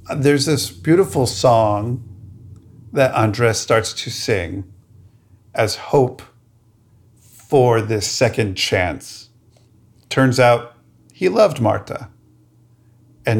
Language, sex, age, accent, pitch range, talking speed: English, male, 50-69, American, 105-120 Hz, 95 wpm